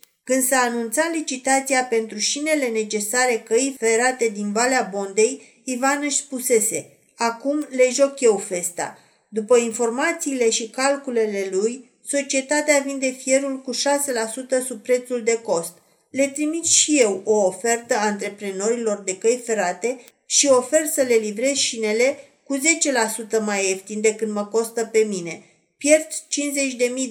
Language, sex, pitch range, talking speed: Romanian, female, 220-270 Hz, 135 wpm